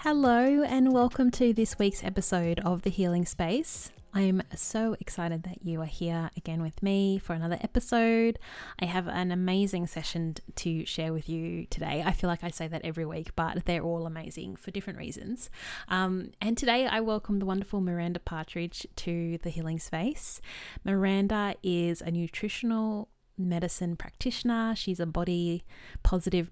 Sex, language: female, English